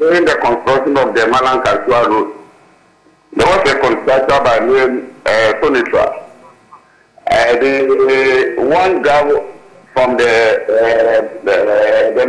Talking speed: 120 wpm